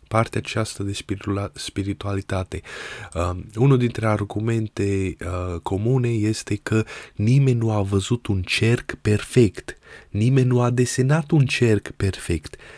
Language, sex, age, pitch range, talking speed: Romanian, male, 20-39, 95-115 Hz, 115 wpm